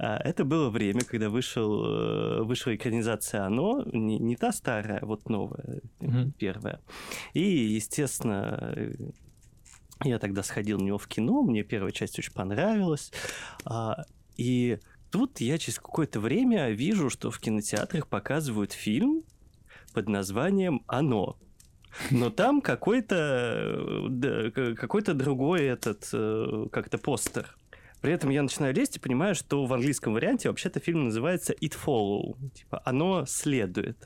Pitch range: 110-165 Hz